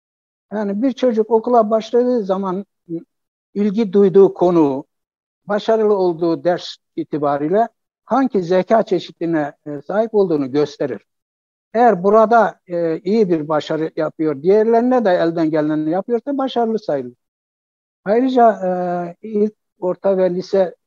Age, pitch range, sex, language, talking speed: 60-79, 150-210 Hz, male, Turkish, 110 wpm